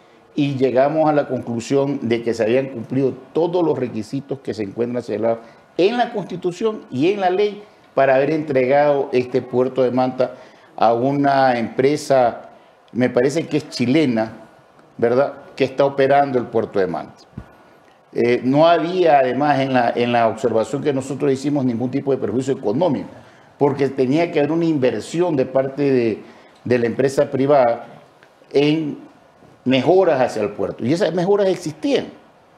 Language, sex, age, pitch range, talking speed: English, male, 50-69, 125-155 Hz, 155 wpm